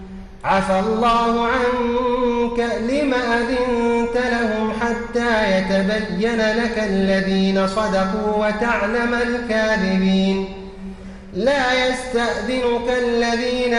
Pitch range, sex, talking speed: 195-235 Hz, male, 70 wpm